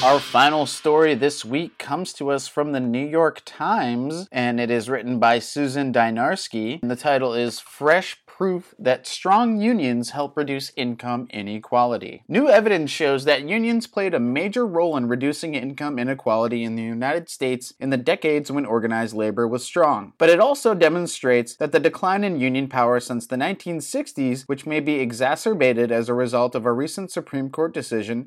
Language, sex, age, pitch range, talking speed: English, male, 30-49, 125-165 Hz, 180 wpm